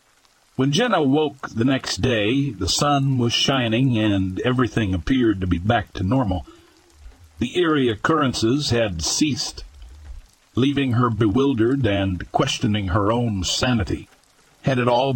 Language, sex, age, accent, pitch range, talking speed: English, male, 60-79, American, 95-135 Hz, 135 wpm